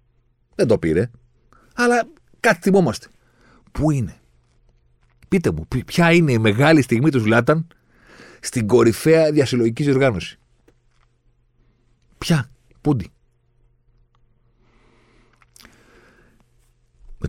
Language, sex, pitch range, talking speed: Greek, male, 80-120 Hz, 85 wpm